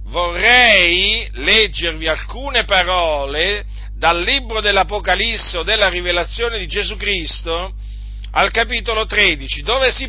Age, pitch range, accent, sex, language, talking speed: 40-59, 145-205 Hz, native, male, Italian, 105 wpm